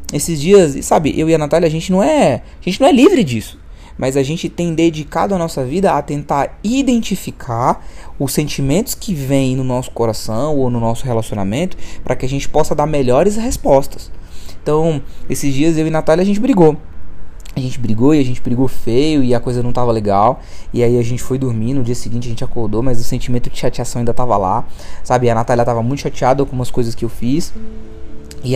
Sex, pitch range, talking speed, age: male, 125-165 Hz, 220 wpm, 20-39